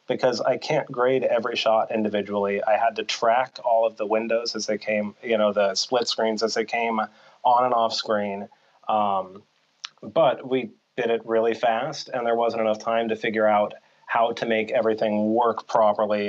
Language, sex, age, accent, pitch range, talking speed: English, male, 30-49, American, 105-120 Hz, 190 wpm